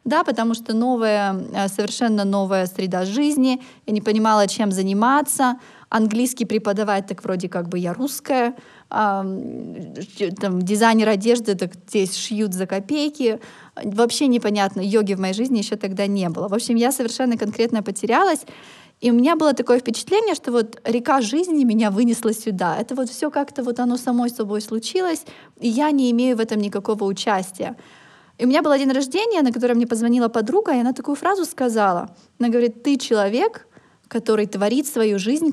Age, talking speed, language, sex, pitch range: 20-39, 170 wpm, Russian, female, 205-255 Hz